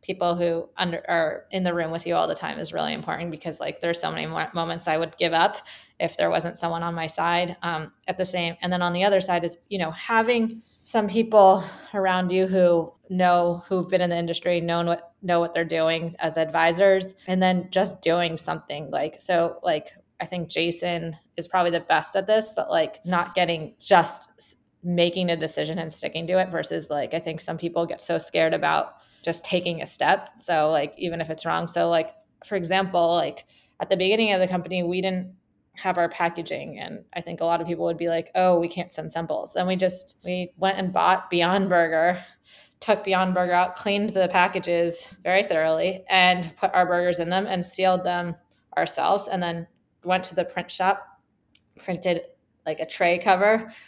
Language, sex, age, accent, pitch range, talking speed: English, female, 20-39, American, 170-185 Hz, 205 wpm